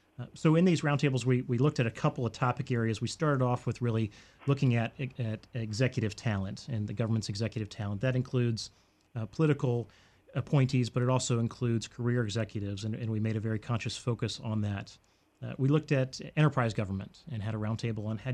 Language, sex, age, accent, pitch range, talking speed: English, male, 30-49, American, 105-125 Hz, 205 wpm